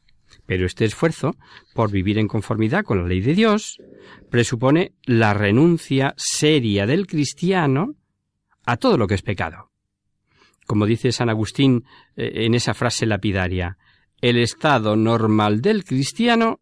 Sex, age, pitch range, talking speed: male, 50-69, 105-155 Hz, 135 wpm